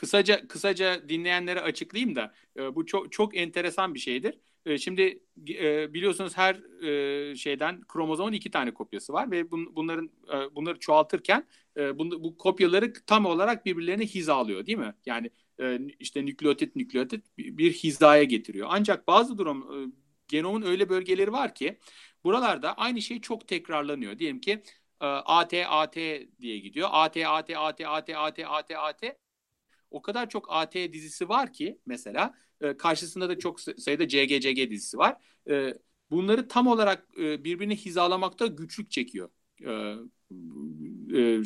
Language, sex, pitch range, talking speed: Turkish, male, 150-210 Hz, 125 wpm